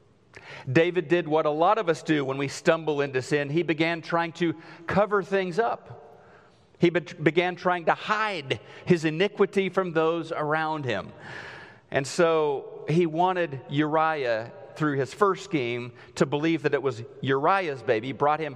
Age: 40-59